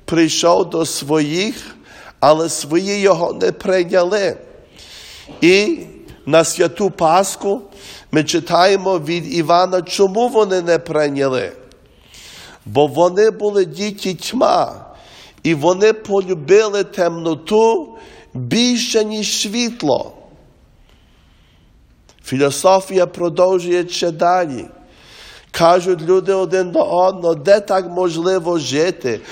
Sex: male